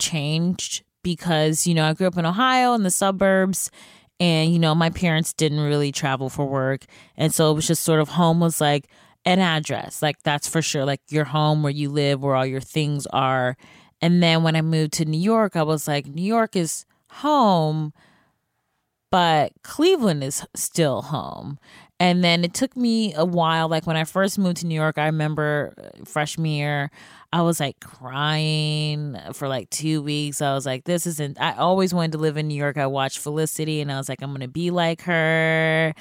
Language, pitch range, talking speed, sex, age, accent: English, 150-180 Hz, 200 wpm, female, 20-39, American